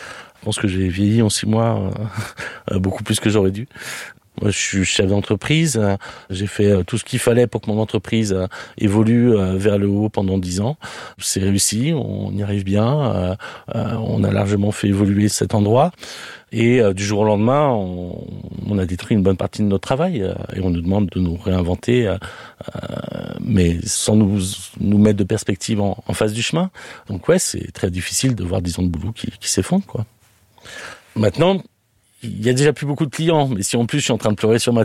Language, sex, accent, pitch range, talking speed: French, male, French, 95-115 Hz, 220 wpm